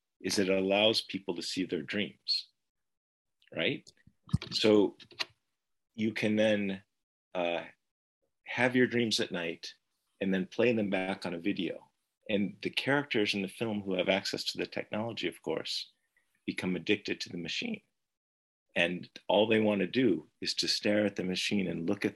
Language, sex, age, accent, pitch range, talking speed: English, male, 40-59, American, 95-125 Hz, 165 wpm